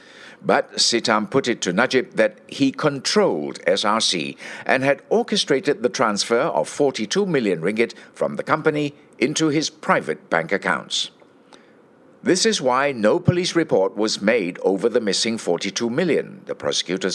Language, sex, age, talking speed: English, male, 60-79, 145 wpm